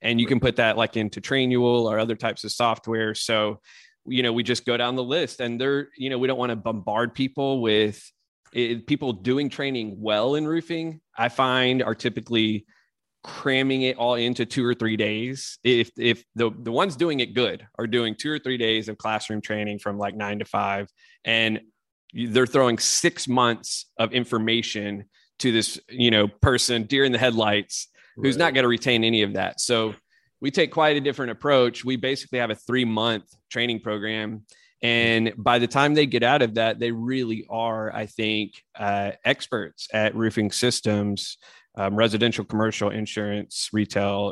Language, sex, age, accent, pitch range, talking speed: English, male, 30-49, American, 105-125 Hz, 185 wpm